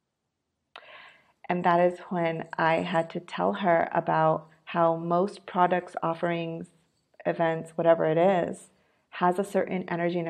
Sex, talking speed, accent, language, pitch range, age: female, 135 wpm, American, English, 165-180 Hz, 40-59